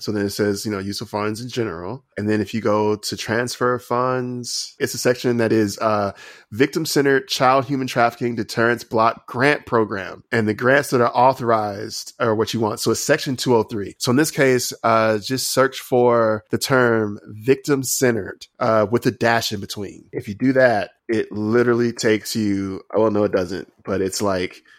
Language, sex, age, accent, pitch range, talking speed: English, male, 20-39, American, 105-130 Hz, 195 wpm